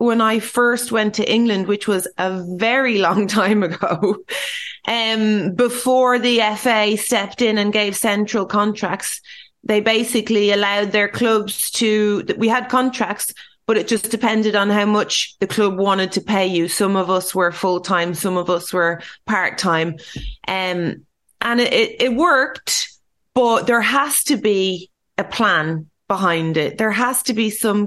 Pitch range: 195-230 Hz